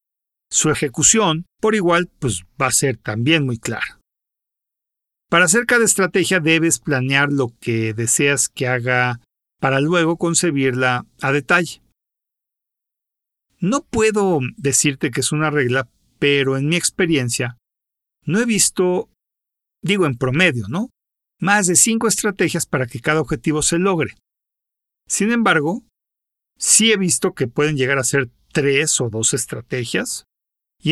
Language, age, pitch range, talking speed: Spanish, 50-69, 130-180 Hz, 135 wpm